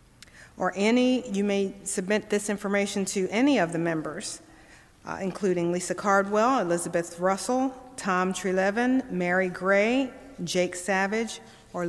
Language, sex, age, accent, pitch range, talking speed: English, female, 50-69, American, 185-235 Hz, 125 wpm